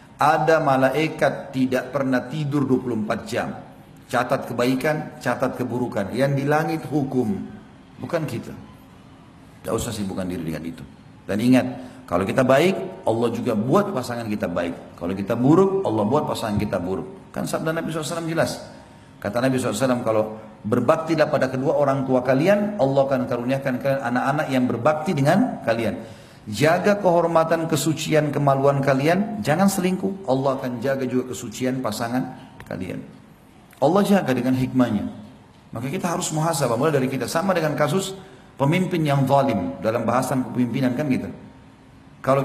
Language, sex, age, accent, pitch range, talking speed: Indonesian, male, 40-59, native, 125-165 Hz, 145 wpm